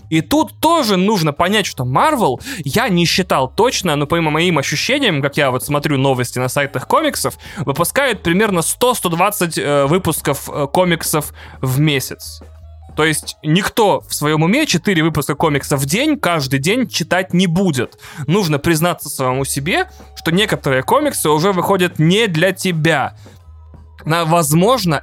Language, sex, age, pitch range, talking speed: Russian, male, 20-39, 135-175 Hz, 145 wpm